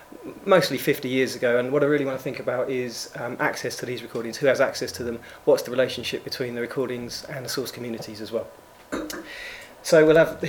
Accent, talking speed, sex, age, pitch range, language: British, 225 wpm, male, 30-49, 135-160 Hz, English